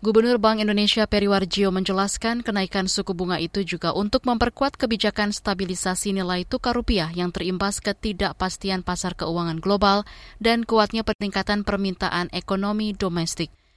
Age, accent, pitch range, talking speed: 20-39, native, 180-220 Hz, 125 wpm